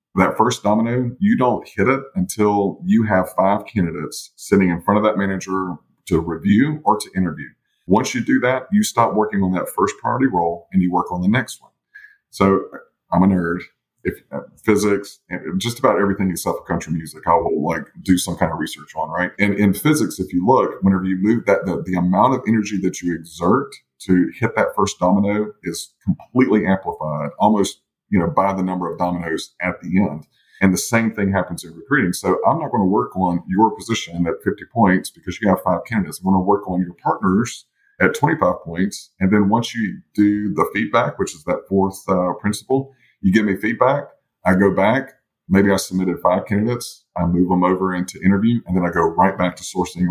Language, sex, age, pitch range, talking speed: English, male, 40-59, 90-105 Hz, 210 wpm